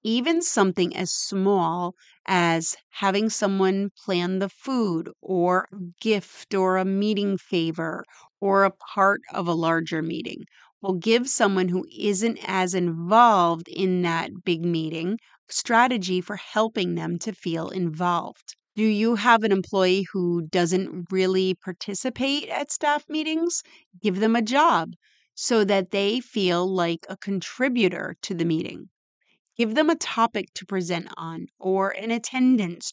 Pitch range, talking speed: 180-225 Hz, 140 wpm